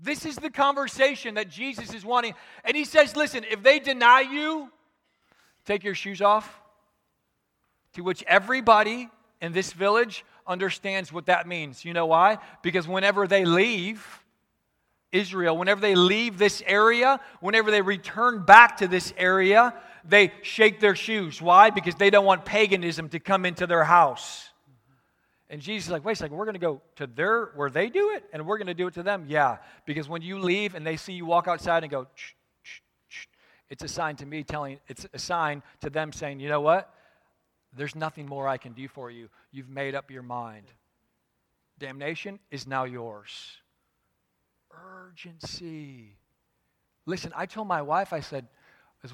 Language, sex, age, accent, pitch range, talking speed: English, male, 40-59, American, 150-210 Hz, 175 wpm